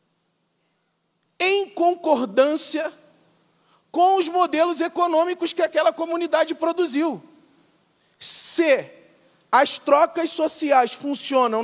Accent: Brazilian